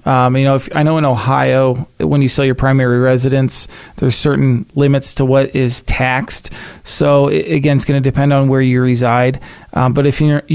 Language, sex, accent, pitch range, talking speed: English, male, American, 125-140 Hz, 195 wpm